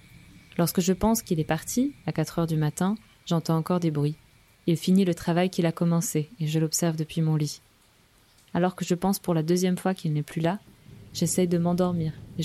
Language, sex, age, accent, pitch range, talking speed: French, female, 20-39, French, 140-180 Hz, 210 wpm